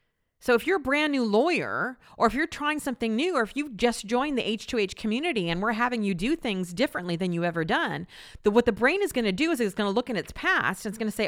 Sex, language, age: female, English, 40-59